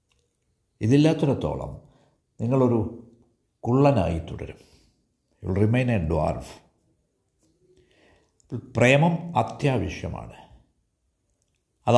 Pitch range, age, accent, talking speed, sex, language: 95-140 Hz, 60-79, native, 55 wpm, male, Malayalam